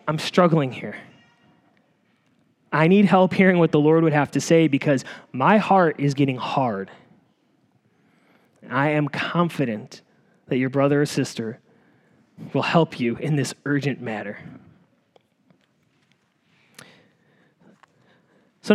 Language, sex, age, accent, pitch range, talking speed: English, male, 20-39, American, 150-210 Hz, 120 wpm